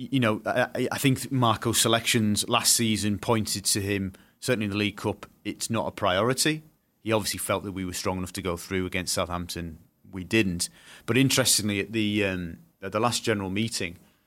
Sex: male